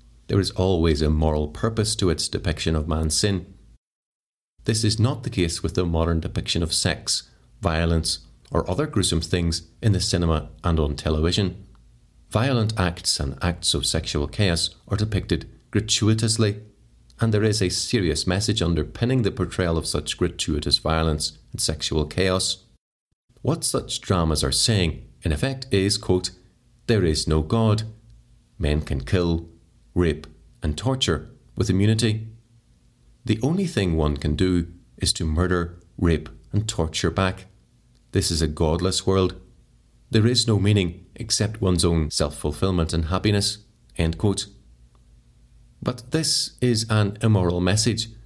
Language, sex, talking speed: English, male, 145 wpm